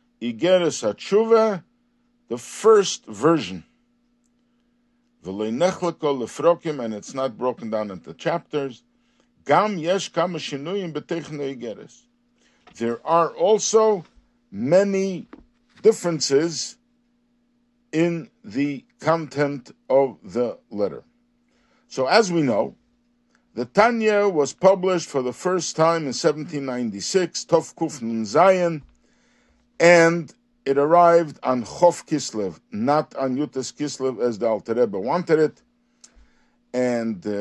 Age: 50-69